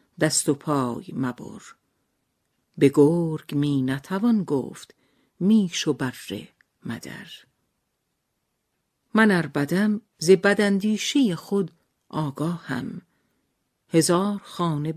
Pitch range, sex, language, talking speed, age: 150-200 Hz, female, Persian, 85 wpm, 50-69